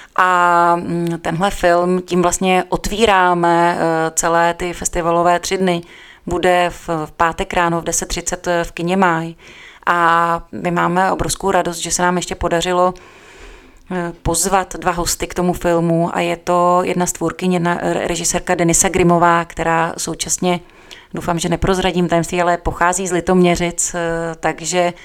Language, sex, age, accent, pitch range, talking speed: Czech, female, 30-49, native, 170-180 Hz, 135 wpm